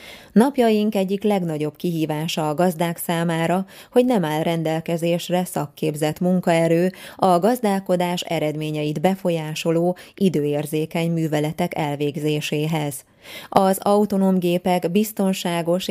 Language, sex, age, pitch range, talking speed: Hungarian, female, 20-39, 150-185 Hz, 90 wpm